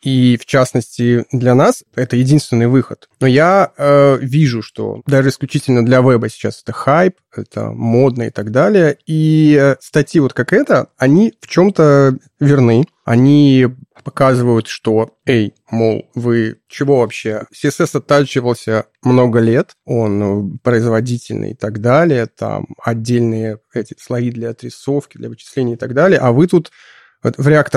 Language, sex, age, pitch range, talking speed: Russian, male, 20-39, 115-145 Hz, 145 wpm